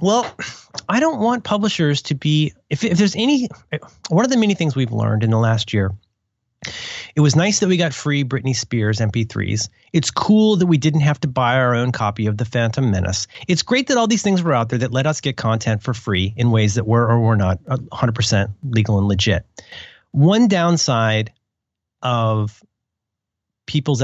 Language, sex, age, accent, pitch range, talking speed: English, male, 30-49, American, 110-145 Hz, 195 wpm